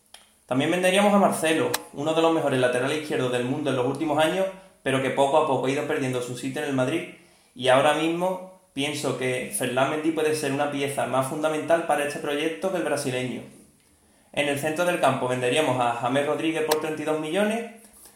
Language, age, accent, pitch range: Spanish, 30-49, Spanish, 130-160 Hz